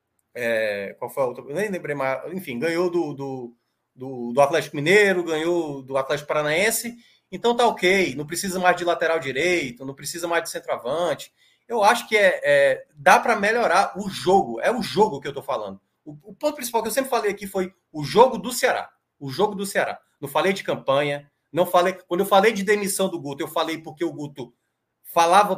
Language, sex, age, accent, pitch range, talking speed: Portuguese, male, 20-39, Brazilian, 145-205 Hz, 200 wpm